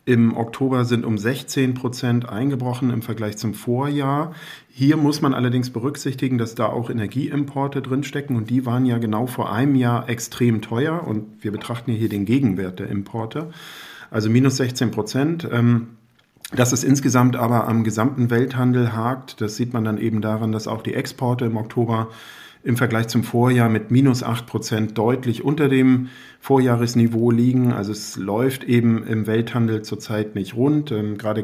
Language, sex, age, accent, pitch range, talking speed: German, male, 50-69, German, 110-125 Hz, 165 wpm